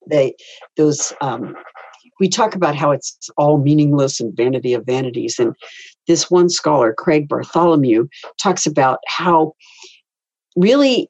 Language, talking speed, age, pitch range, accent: English, 135 wpm, 50-69, 145-205 Hz, American